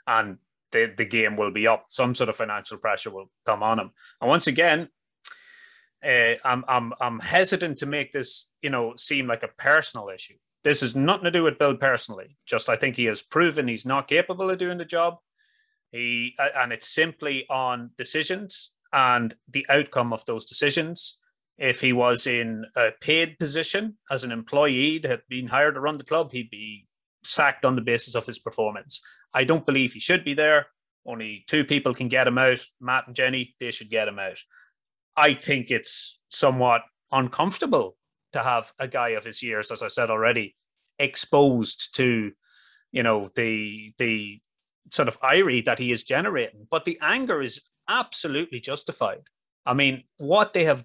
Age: 30-49